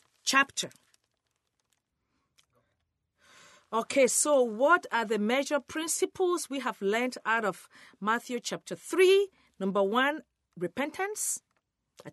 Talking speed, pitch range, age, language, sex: 100 wpm, 185-300 Hz, 40-59, English, female